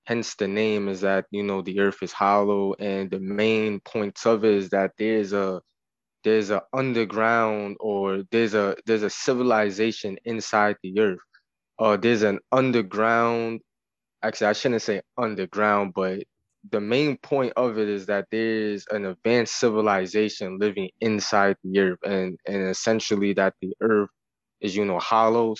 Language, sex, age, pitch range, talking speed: English, male, 20-39, 100-115 Hz, 160 wpm